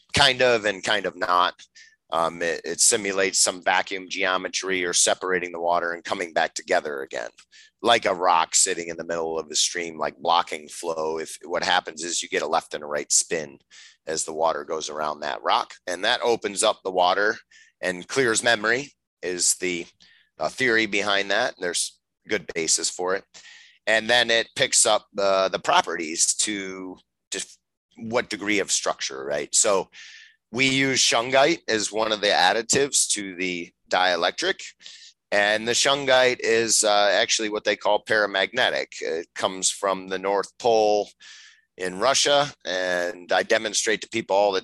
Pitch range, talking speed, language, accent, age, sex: 90-120 Hz, 170 wpm, English, American, 30-49, male